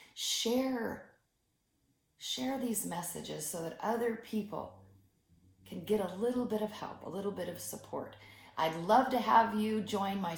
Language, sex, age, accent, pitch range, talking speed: English, female, 40-59, American, 150-210 Hz, 155 wpm